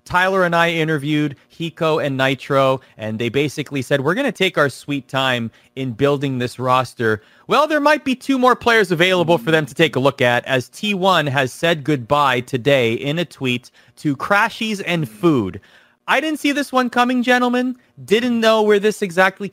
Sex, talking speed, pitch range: male, 190 wpm, 130-185 Hz